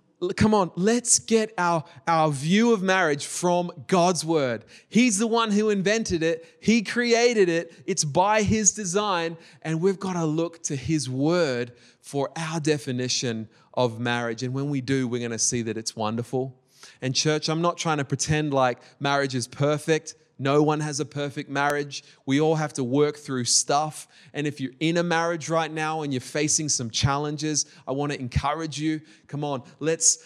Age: 20-39